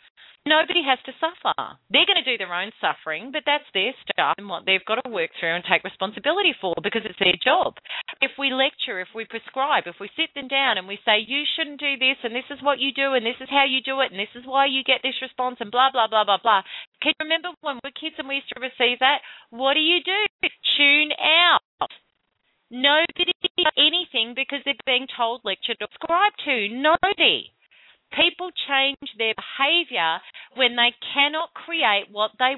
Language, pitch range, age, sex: English, 220-300 Hz, 40-59, female